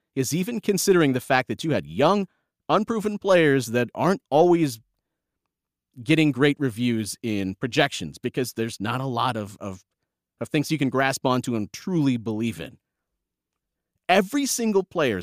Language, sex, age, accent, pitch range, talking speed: English, male, 30-49, American, 120-180 Hz, 155 wpm